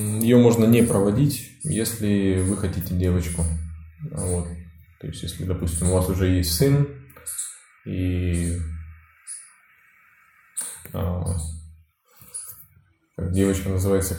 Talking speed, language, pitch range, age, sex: 85 wpm, Russian, 90-100 Hz, 20-39, male